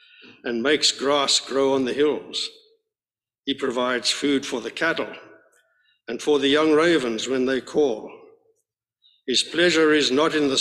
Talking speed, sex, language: 155 wpm, male, English